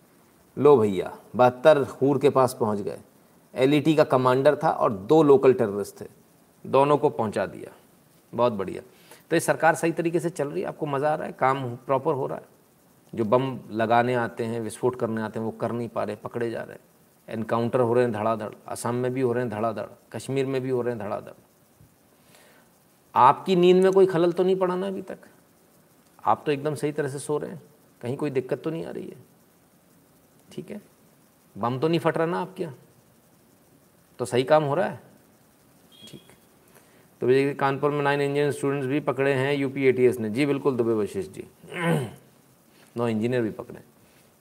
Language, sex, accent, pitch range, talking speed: Hindi, male, native, 120-150 Hz, 195 wpm